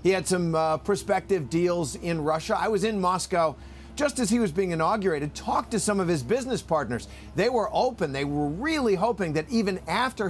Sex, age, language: male, 50-69, English